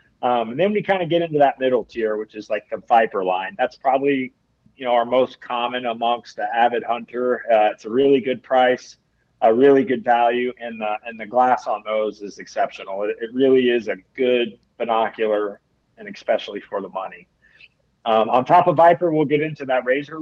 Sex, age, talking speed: male, 30-49, 200 wpm